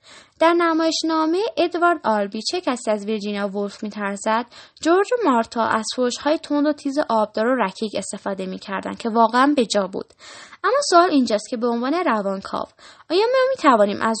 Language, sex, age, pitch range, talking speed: Persian, female, 10-29, 210-270 Hz, 160 wpm